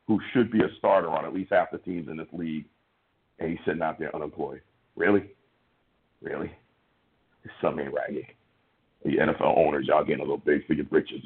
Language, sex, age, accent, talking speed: English, male, 50-69, American, 190 wpm